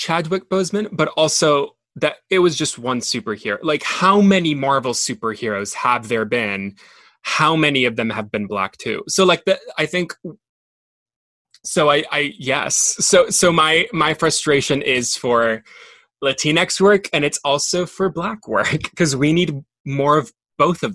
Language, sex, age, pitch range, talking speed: English, male, 20-39, 120-170 Hz, 165 wpm